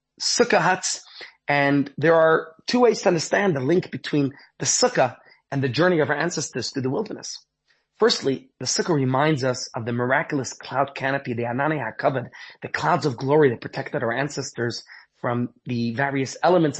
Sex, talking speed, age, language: male, 170 wpm, 30-49, English